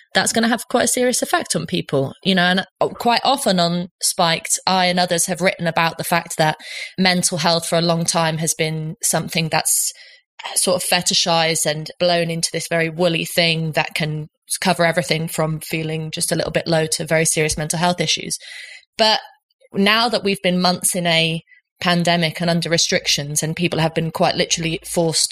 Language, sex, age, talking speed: English, female, 20-39, 195 wpm